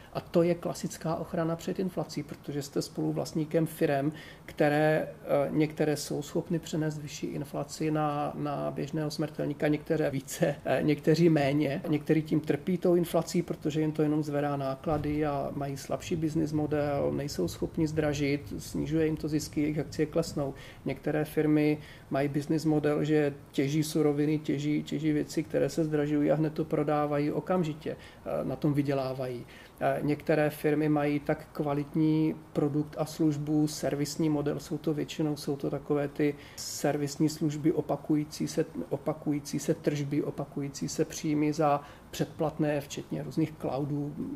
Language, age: Czech, 40-59